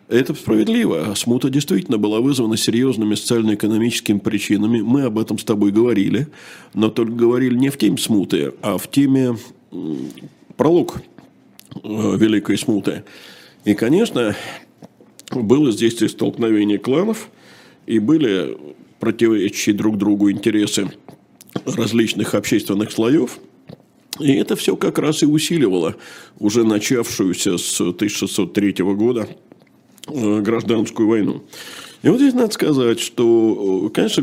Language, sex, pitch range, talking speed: Russian, male, 105-130 Hz, 110 wpm